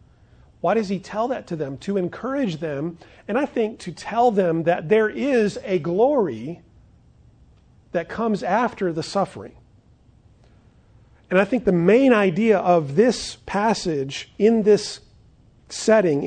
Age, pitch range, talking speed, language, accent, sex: 40-59, 150-210 Hz, 140 wpm, English, American, male